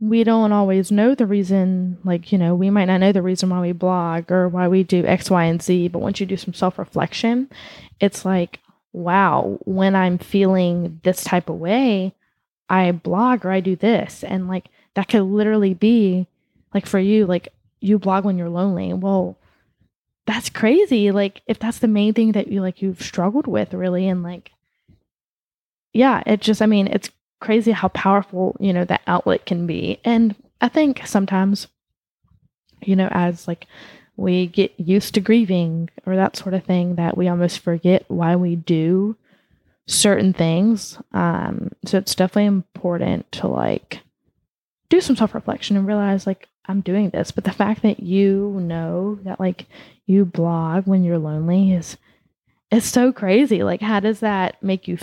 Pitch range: 180-205 Hz